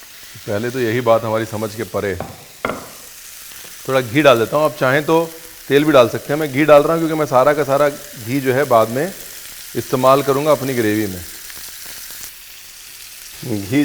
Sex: male